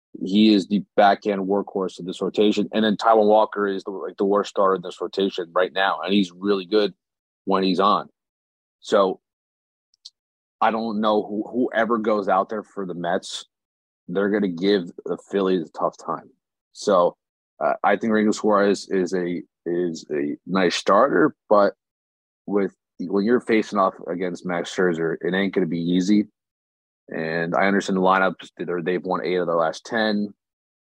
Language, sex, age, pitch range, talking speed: English, male, 30-49, 90-105 Hz, 175 wpm